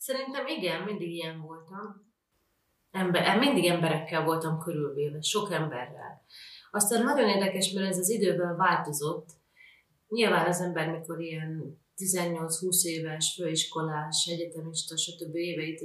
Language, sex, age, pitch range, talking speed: Hungarian, female, 30-49, 165-205 Hz, 115 wpm